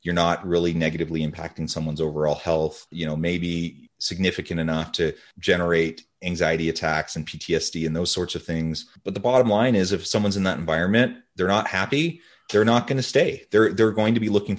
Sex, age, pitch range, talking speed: male, 30-49, 80-105 Hz, 195 wpm